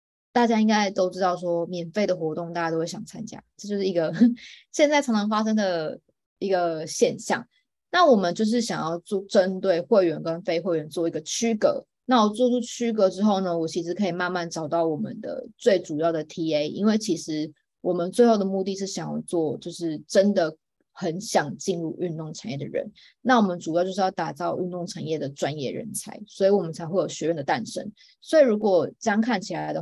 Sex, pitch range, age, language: female, 165-215 Hz, 20-39, Chinese